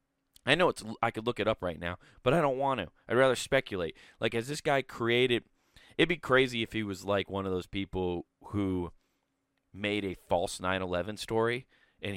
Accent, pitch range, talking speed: American, 105-140 Hz, 200 wpm